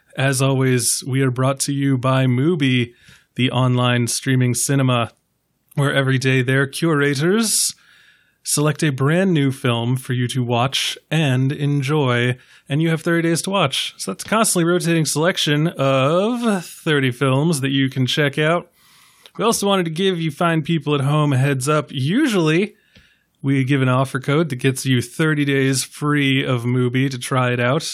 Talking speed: 175 wpm